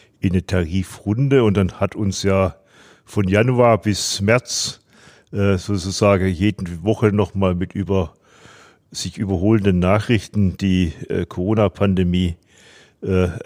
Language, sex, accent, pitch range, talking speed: German, male, German, 95-105 Hz, 115 wpm